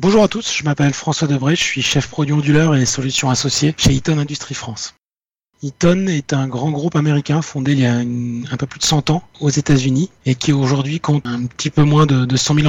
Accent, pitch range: French, 130-155 Hz